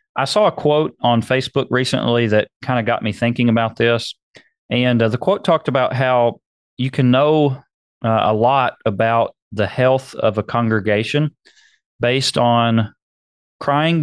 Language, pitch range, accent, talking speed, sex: English, 110-135 Hz, American, 160 wpm, male